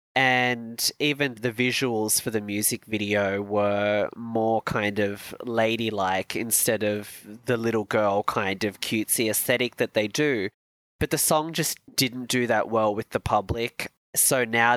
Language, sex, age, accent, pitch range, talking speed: English, male, 20-39, Australian, 105-125 Hz, 155 wpm